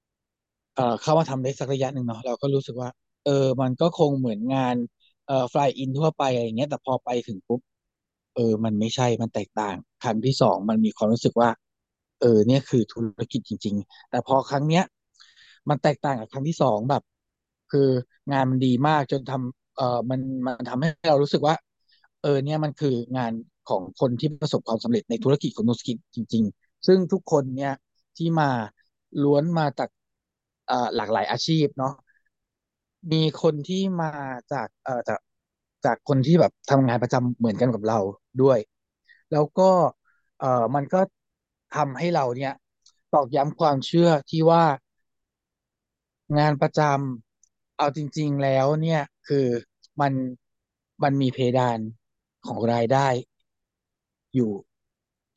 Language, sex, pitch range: Thai, male, 120-150 Hz